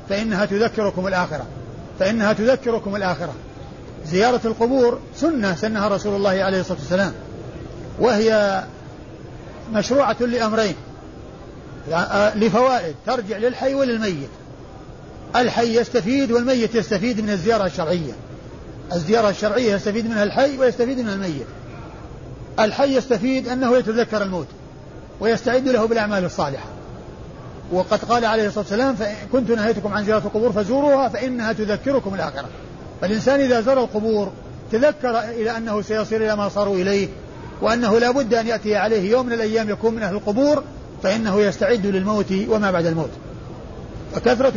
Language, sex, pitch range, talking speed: Arabic, male, 195-240 Hz, 125 wpm